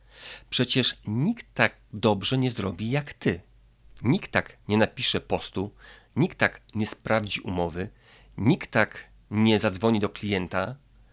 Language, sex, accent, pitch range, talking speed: Polish, male, native, 105-125 Hz, 130 wpm